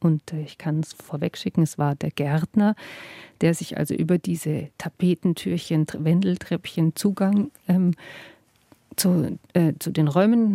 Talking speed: 135 wpm